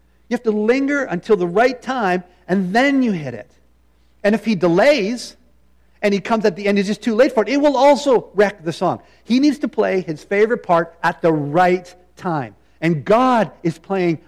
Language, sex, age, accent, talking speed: English, male, 50-69, American, 215 wpm